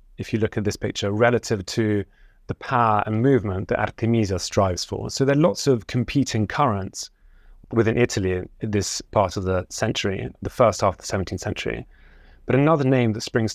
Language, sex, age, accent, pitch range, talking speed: English, male, 30-49, British, 100-120 Hz, 190 wpm